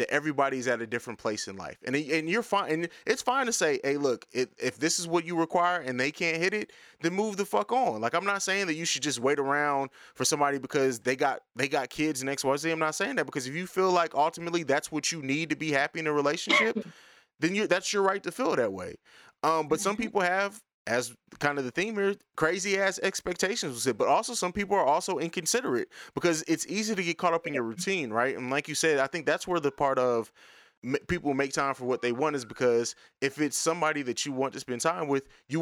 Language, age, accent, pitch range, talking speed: English, 20-39, American, 140-180 Hz, 250 wpm